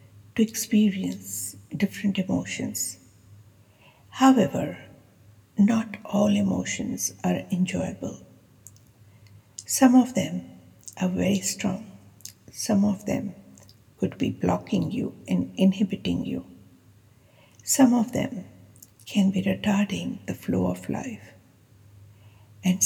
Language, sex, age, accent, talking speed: English, female, 60-79, Indian, 95 wpm